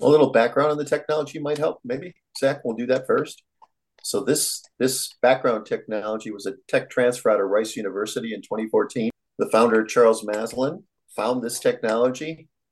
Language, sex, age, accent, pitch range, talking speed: English, male, 50-69, American, 110-155 Hz, 170 wpm